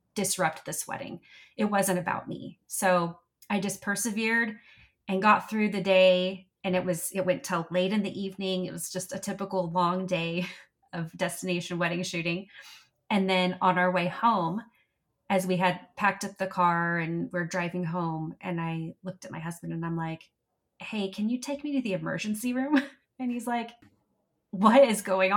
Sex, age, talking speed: female, 30-49, 185 wpm